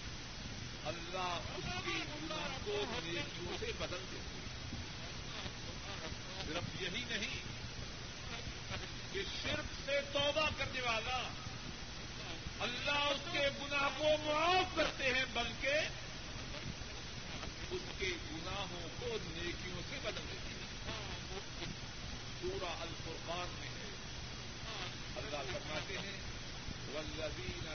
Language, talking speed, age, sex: Urdu, 95 wpm, 50-69, male